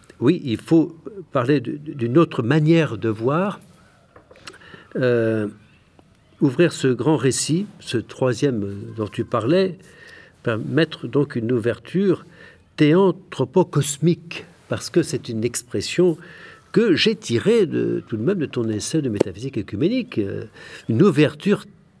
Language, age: French, 60-79